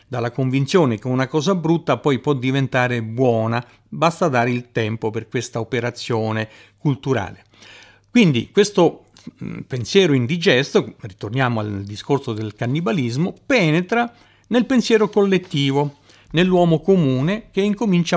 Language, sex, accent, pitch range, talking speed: Italian, male, native, 115-165 Hz, 115 wpm